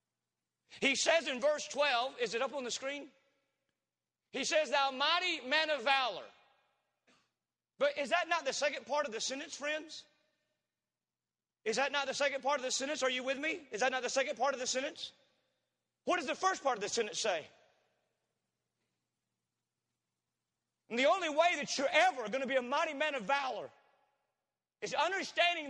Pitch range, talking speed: 265-325 Hz, 180 wpm